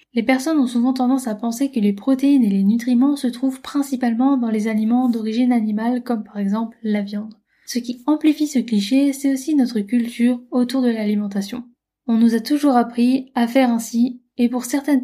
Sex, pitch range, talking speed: female, 215-255 Hz, 195 wpm